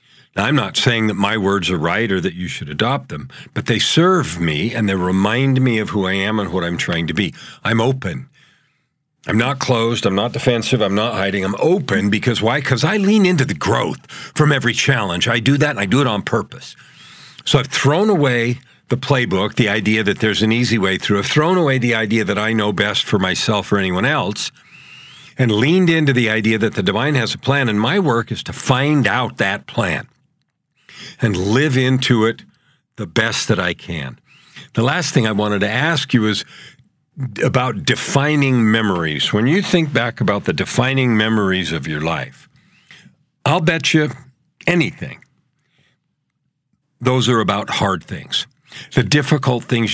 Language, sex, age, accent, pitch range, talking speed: English, male, 50-69, American, 105-145 Hz, 190 wpm